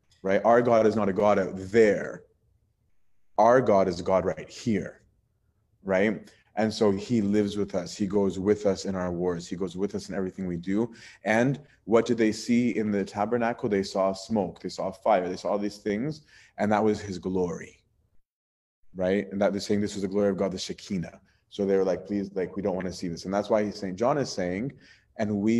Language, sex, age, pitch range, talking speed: English, male, 30-49, 95-105 Hz, 225 wpm